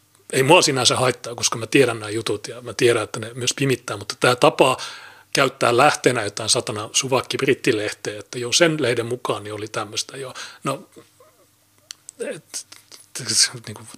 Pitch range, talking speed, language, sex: 110-145 Hz, 150 wpm, Finnish, male